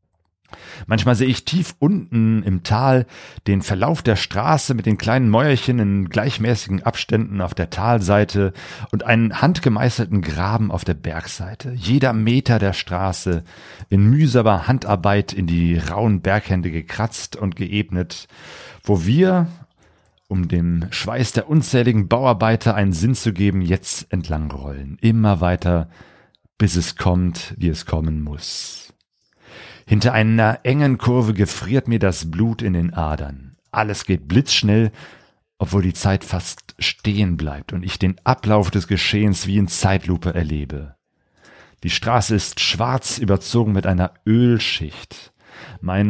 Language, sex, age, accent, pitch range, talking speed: German, male, 40-59, German, 90-120 Hz, 135 wpm